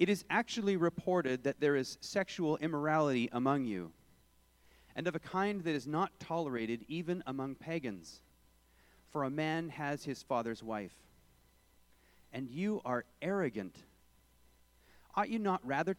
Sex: male